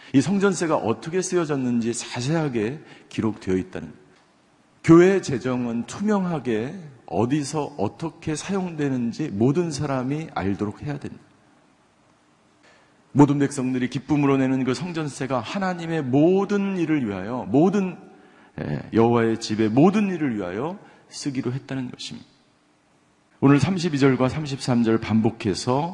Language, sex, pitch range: Korean, male, 120-165 Hz